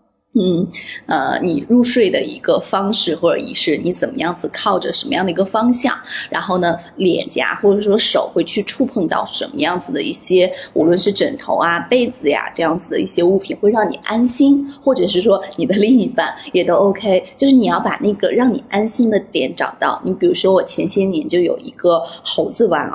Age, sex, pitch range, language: 20-39, female, 180-245 Hz, Chinese